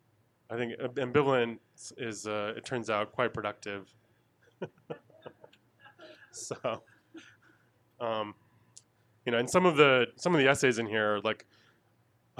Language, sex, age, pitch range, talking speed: English, male, 20-39, 105-120 Hz, 125 wpm